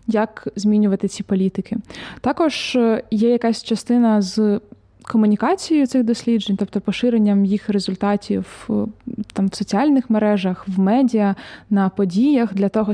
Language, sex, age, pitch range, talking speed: Ukrainian, female, 20-39, 205-245 Hz, 120 wpm